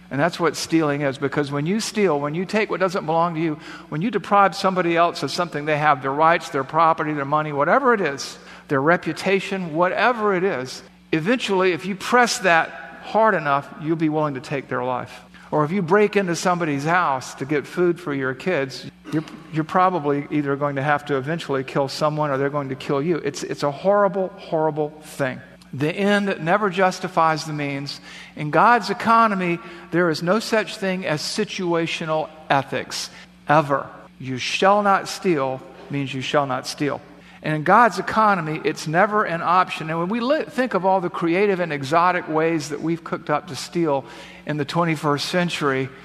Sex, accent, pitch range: male, American, 145-185 Hz